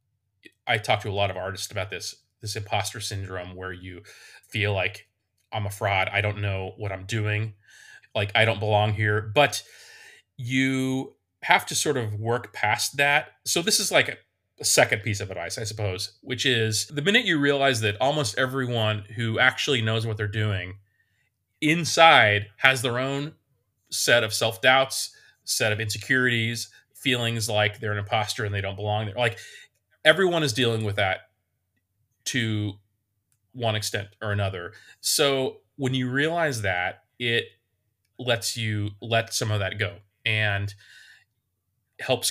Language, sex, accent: English, male, American